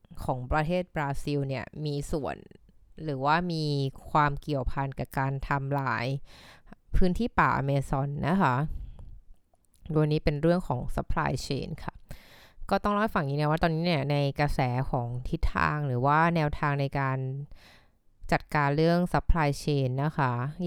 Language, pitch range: Thai, 135-165 Hz